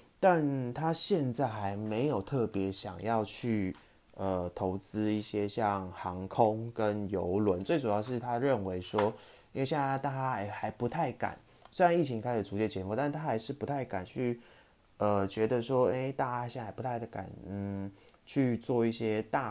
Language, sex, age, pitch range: Chinese, male, 20-39, 100-120 Hz